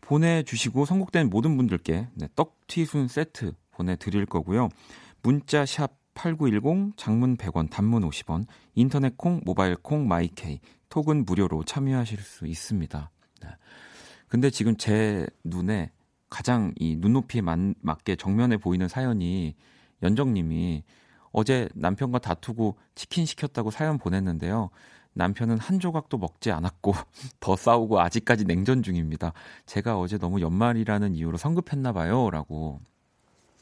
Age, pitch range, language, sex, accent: 40-59, 90-130 Hz, Korean, male, native